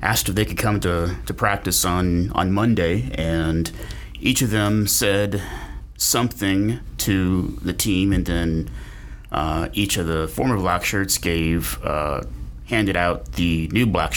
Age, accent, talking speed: 30-49, American, 155 wpm